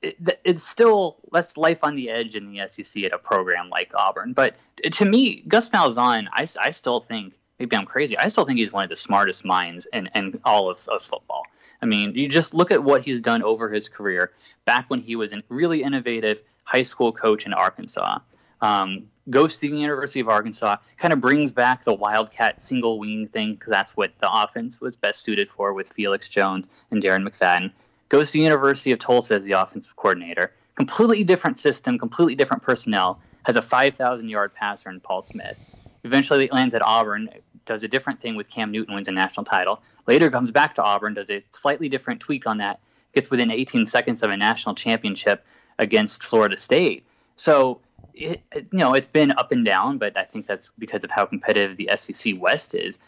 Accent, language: American, English